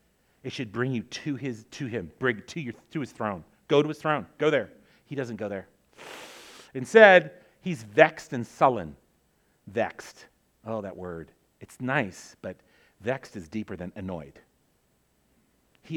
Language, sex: English, male